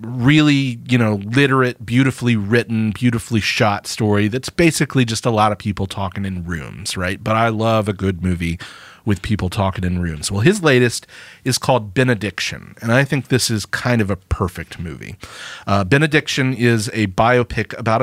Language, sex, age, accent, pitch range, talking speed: English, male, 30-49, American, 105-130 Hz, 175 wpm